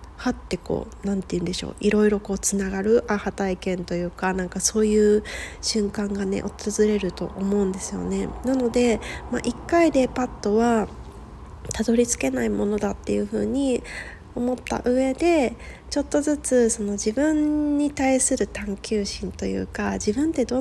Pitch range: 195-245 Hz